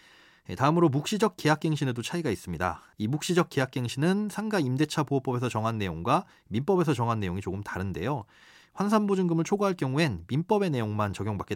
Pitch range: 115-165 Hz